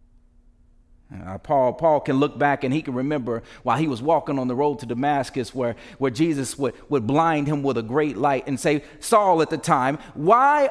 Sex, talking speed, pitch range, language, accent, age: male, 205 wpm, 145-185 Hz, English, American, 40-59